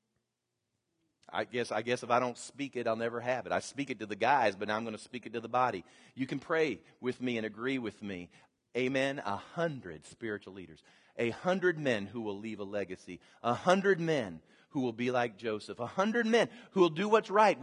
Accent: American